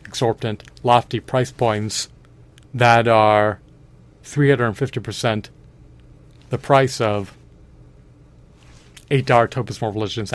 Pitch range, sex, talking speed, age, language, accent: 105-125 Hz, male, 80 wpm, 40-59, English, American